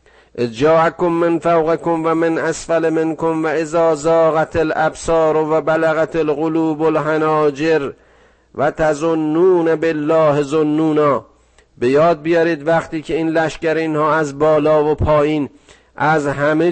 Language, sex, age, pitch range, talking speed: Persian, male, 50-69, 125-160 Hz, 130 wpm